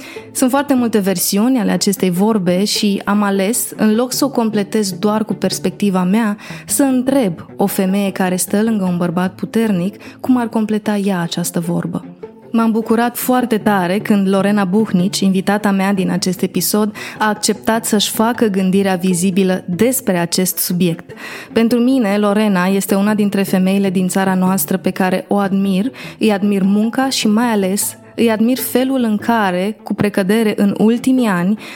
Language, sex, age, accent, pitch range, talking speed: Romanian, female, 20-39, native, 190-225 Hz, 165 wpm